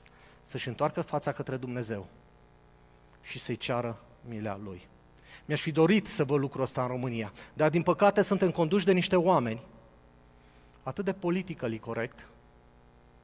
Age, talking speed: 30-49, 140 wpm